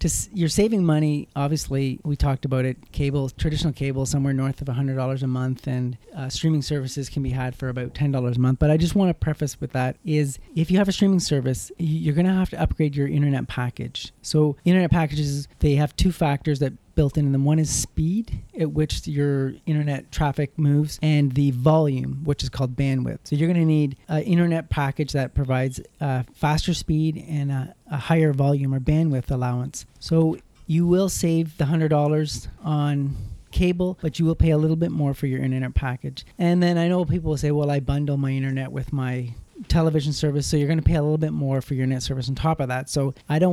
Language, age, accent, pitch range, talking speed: English, 30-49, American, 135-160 Hz, 215 wpm